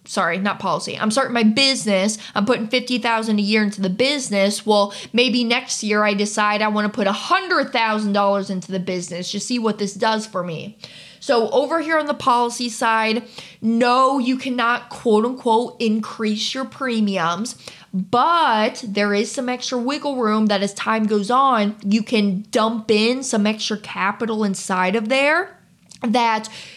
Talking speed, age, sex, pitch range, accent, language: 165 wpm, 20-39, female, 205-245 Hz, American, English